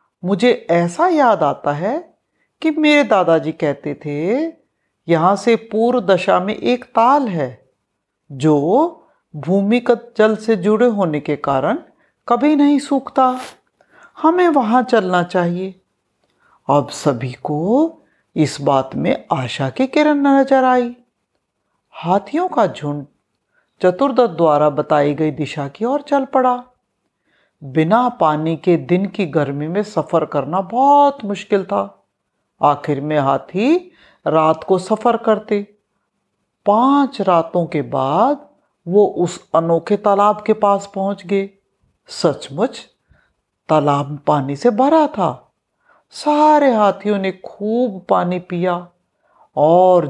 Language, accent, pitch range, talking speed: Hindi, native, 155-245 Hz, 120 wpm